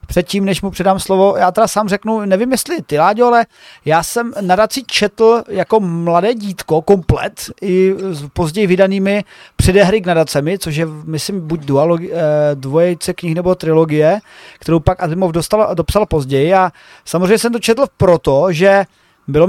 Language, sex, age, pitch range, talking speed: Czech, male, 30-49, 175-220 Hz, 155 wpm